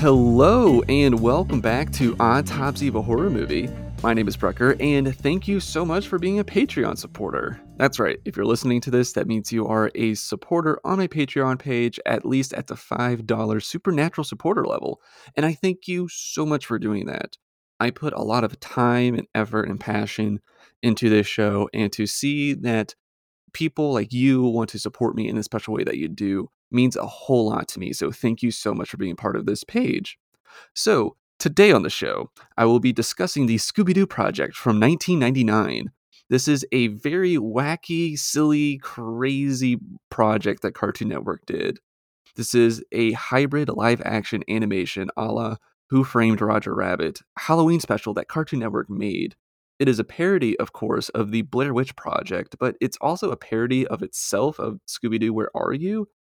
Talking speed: 185 wpm